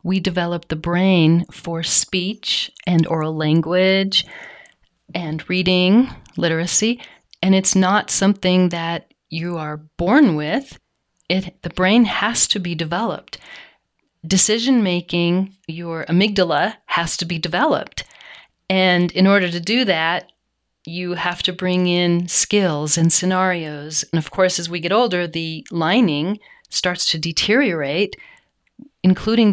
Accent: American